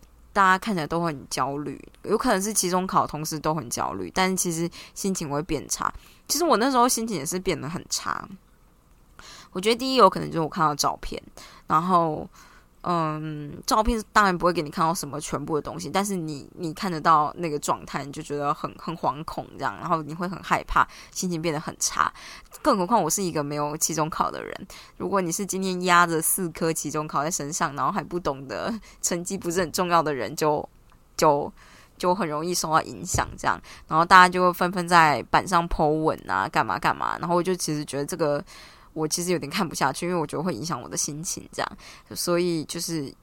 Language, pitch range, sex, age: Chinese, 150-185 Hz, female, 20-39